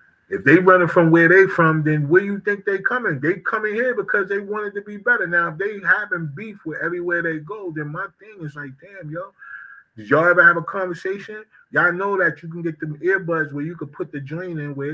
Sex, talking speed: male, 240 wpm